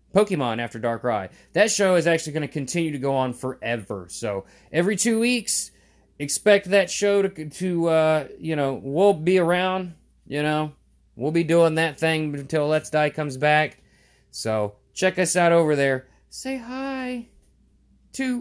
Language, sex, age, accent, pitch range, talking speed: English, male, 30-49, American, 110-175 Hz, 165 wpm